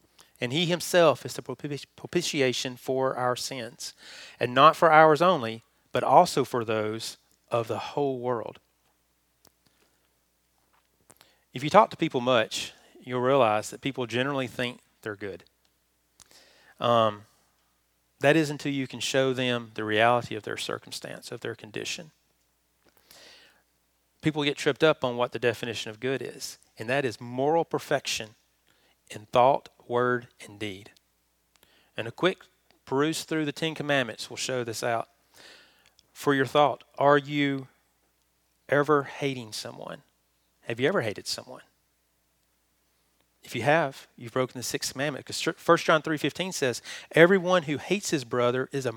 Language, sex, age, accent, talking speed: English, male, 40-59, American, 145 wpm